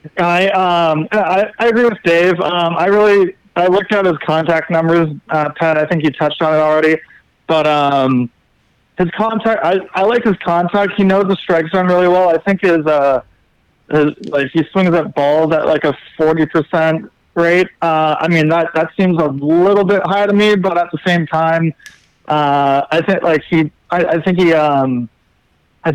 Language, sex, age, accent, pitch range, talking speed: English, male, 20-39, American, 155-180 Hz, 195 wpm